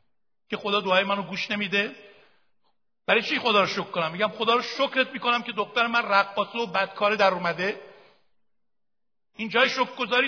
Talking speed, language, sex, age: 165 wpm, Persian, male, 60-79